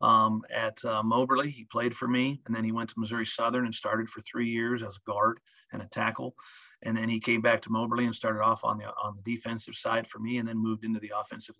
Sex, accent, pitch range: male, American, 110-120 Hz